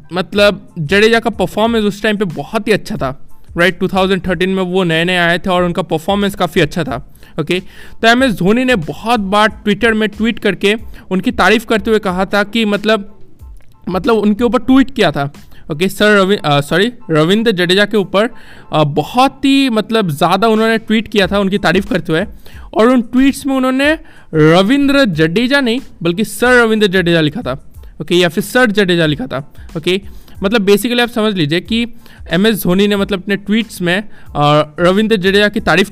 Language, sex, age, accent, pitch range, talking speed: Hindi, male, 20-39, native, 175-220 Hz, 190 wpm